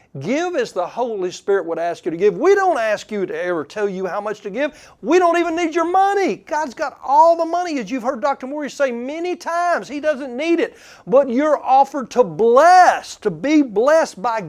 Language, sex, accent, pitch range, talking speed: English, male, American, 185-265 Hz, 225 wpm